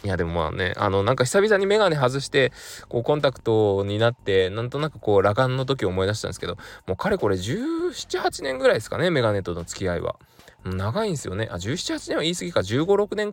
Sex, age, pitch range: male, 20-39, 95-130 Hz